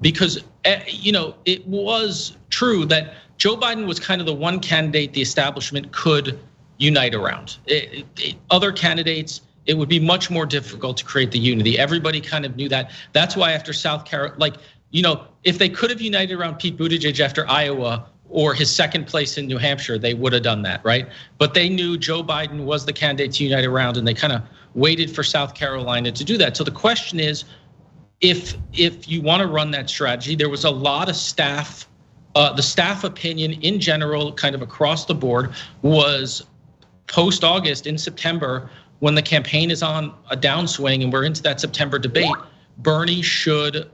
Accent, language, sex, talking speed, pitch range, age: American, English, male, 195 wpm, 140-165 Hz, 40-59